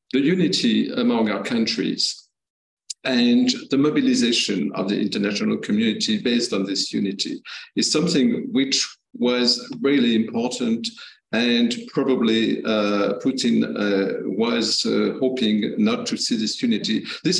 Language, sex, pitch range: English, male, 115-155 Hz